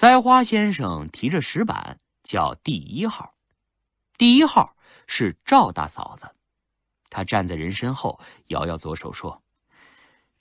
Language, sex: Chinese, male